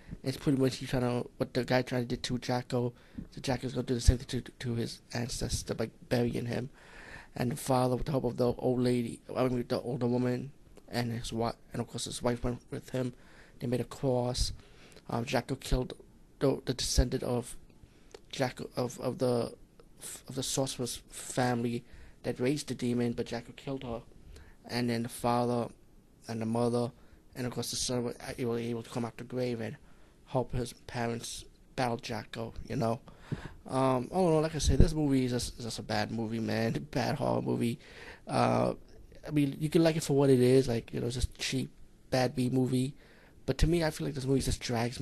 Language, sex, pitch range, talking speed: English, male, 115-130 Hz, 210 wpm